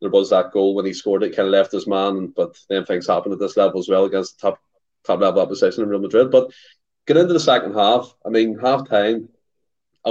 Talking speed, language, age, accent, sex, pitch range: 250 wpm, English, 20-39, Irish, male, 105-150 Hz